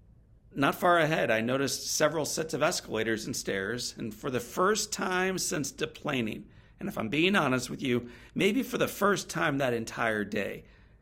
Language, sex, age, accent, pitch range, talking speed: English, male, 50-69, American, 115-160 Hz, 180 wpm